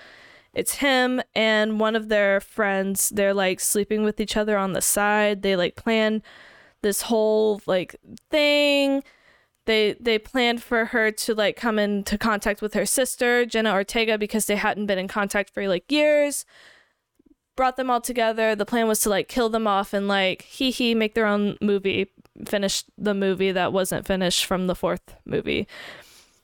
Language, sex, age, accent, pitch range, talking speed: English, female, 10-29, American, 195-230 Hz, 175 wpm